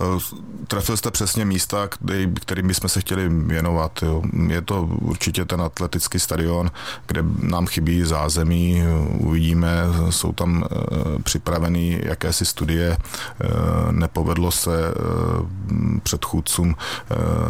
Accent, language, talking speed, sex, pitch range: native, Czech, 95 wpm, male, 80-90 Hz